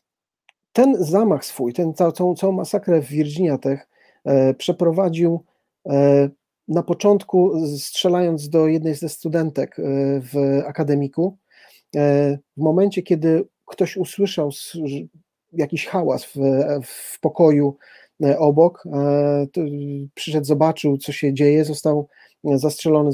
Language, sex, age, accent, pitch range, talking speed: Polish, male, 40-59, native, 145-175 Hz, 95 wpm